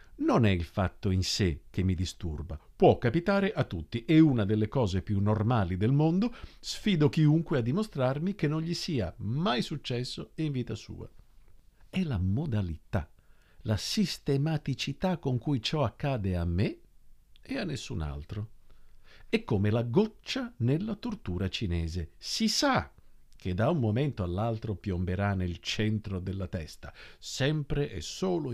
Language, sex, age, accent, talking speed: Italian, male, 50-69, native, 150 wpm